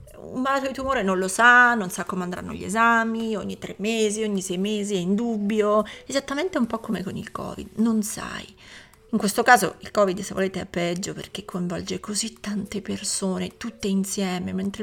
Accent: native